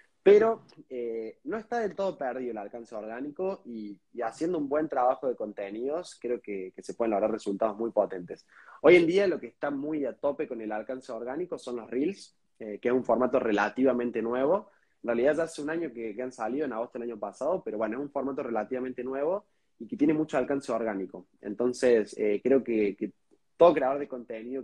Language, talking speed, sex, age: Spanish, 210 wpm, male, 20-39